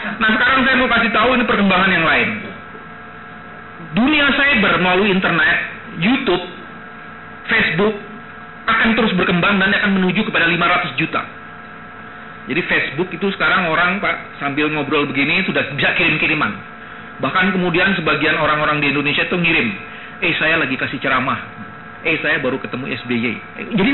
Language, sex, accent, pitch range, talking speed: Indonesian, male, native, 170-240 Hz, 145 wpm